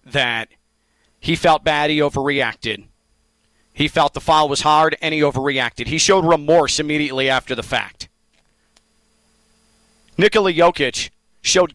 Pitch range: 140-185 Hz